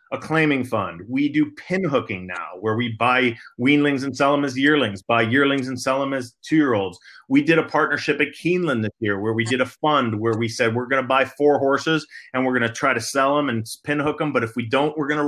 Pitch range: 130-175 Hz